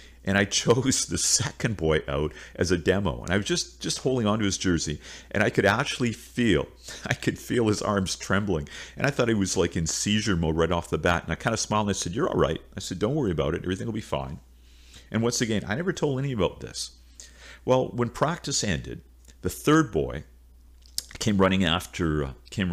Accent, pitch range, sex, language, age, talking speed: American, 70-105 Hz, male, English, 50-69, 225 wpm